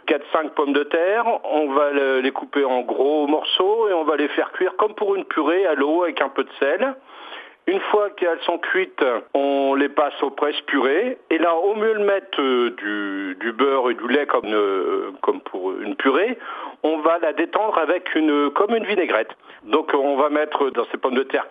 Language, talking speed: French, 210 wpm